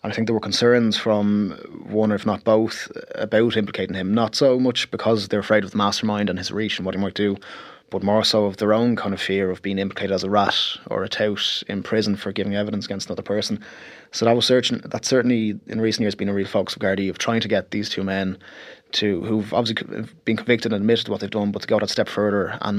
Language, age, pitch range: English, 20-39, 100-110 Hz